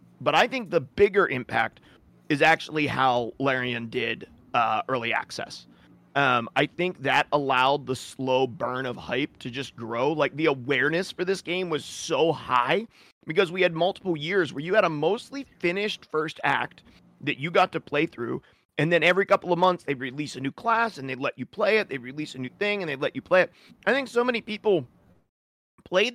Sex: male